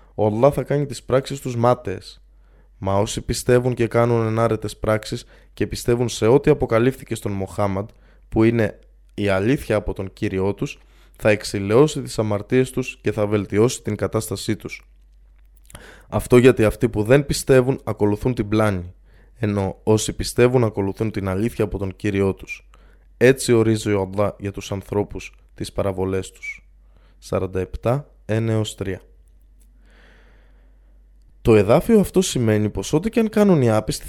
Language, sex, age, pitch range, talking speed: Greek, male, 20-39, 100-125 Hz, 145 wpm